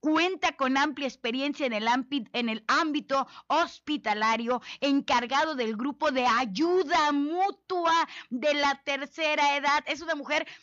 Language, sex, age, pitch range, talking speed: Spanish, female, 30-49, 255-330 Hz, 125 wpm